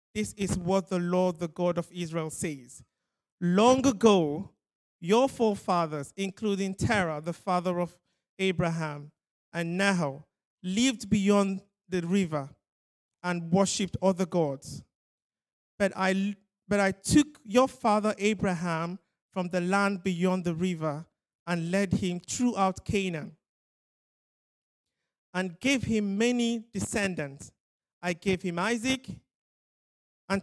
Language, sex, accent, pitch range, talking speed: English, male, Nigerian, 170-200 Hz, 115 wpm